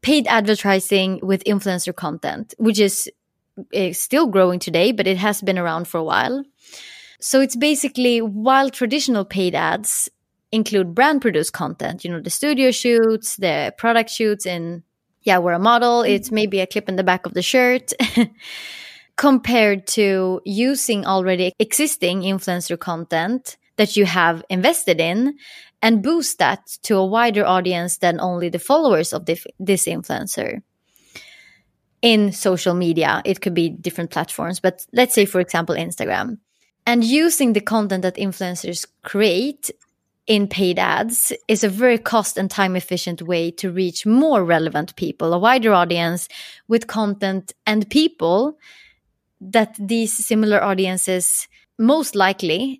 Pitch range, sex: 185-235 Hz, female